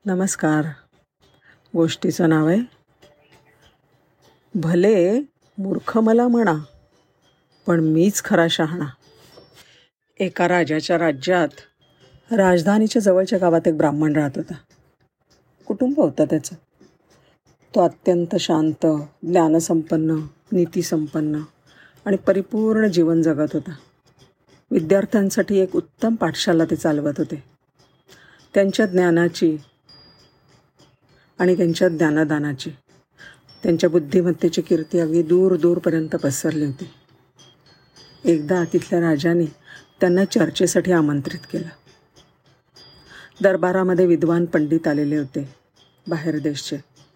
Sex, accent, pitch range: female, native, 155-185 Hz